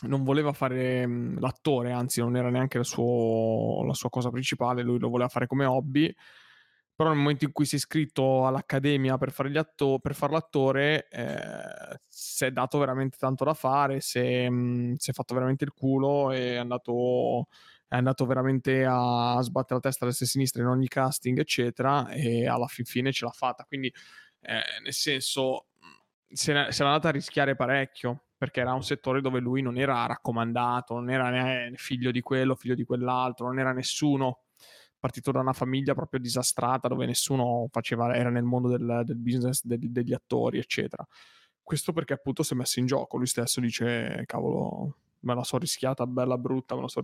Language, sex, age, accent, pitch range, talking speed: Italian, male, 20-39, native, 125-140 Hz, 185 wpm